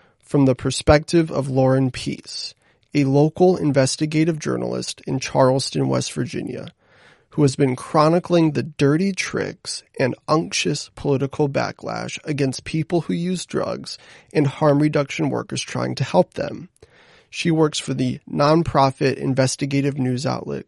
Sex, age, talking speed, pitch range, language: male, 30-49, 135 wpm, 125-150 Hz, English